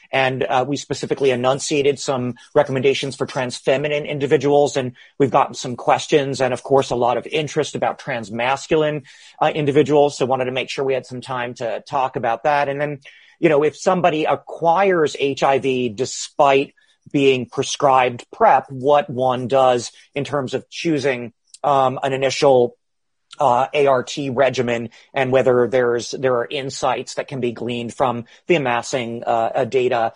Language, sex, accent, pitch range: English, male, American, 125-145 Hz